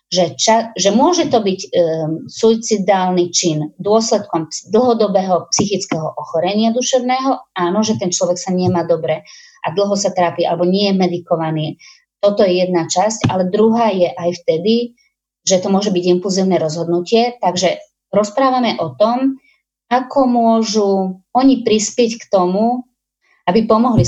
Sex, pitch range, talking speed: female, 170-220 Hz, 140 wpm